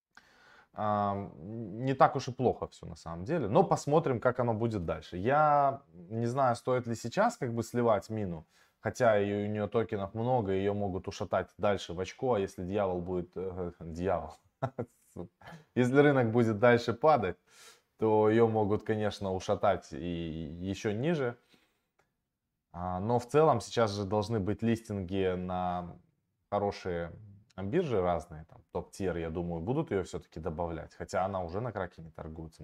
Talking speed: 155 wpm